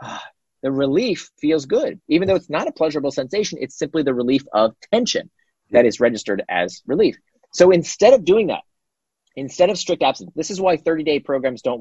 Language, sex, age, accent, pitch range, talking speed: English, male, 30-49, American, 130-180 Hz, 190 wpm